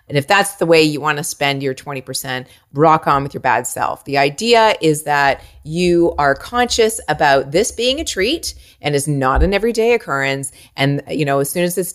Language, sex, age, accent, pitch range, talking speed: English, female, 30-49, American, 140-170 Hz, 210 wpm